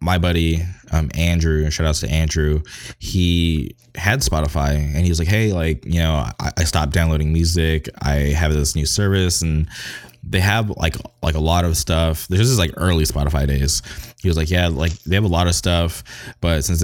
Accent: American